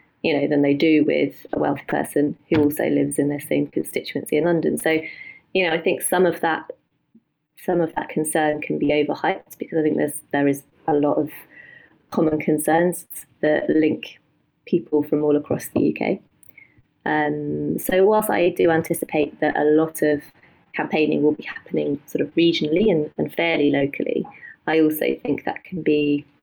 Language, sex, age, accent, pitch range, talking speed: English, female, 30-49, British, 150-180 Hz, 180 wpm